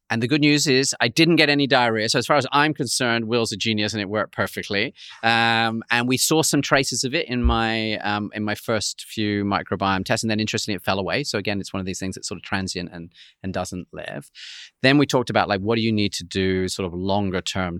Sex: male